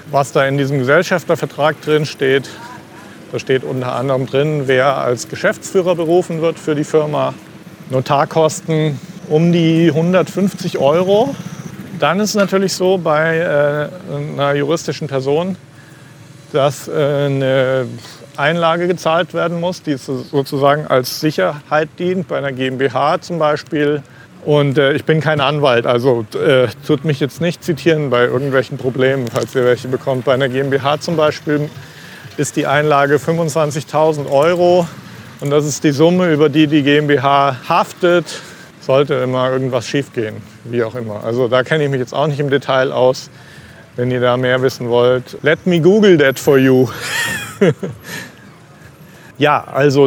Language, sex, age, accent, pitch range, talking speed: German, male, 40-59, German, 135-160 Hz, 145 wpm